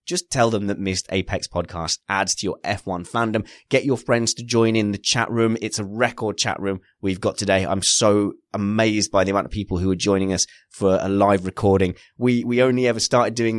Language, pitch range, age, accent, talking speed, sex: English, 95-115 Hz, 20-39, British, 225 wpm, male